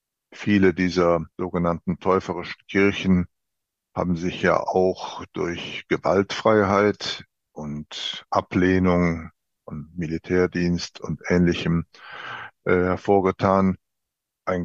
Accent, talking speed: German, 80 wpm